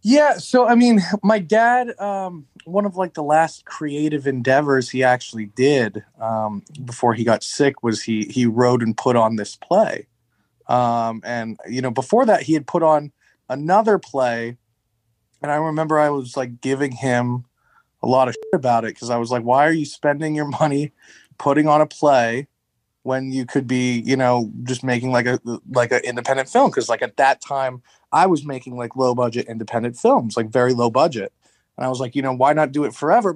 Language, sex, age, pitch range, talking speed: English, male, 30-49, 125-165 Hz, 200 wpm